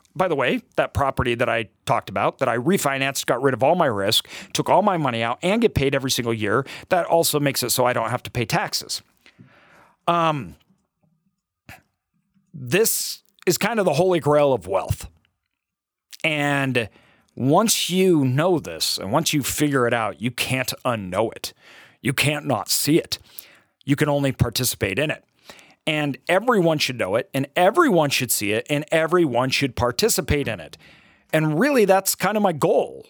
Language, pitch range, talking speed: English, 125-185 Hz, 180 wpm